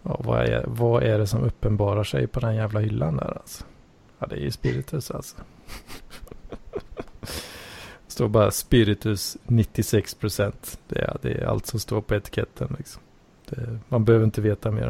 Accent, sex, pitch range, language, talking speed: Norwegian, male, 105-120 Hz, Swedish, 170 wpm